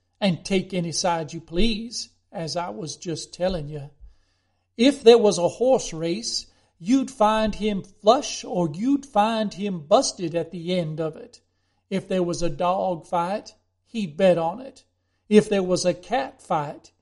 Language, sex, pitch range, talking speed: English, male, 170-220 Hz, 170 wpm